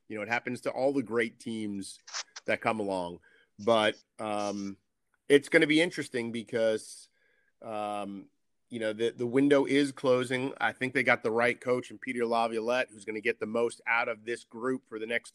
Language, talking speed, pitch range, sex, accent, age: English, 200 wpm, 115-150 Hz, male, American, 30-49